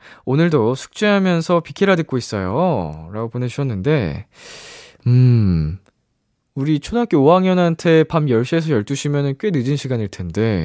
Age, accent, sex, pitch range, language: 20-39, native, male, 90-140 Hz, Korean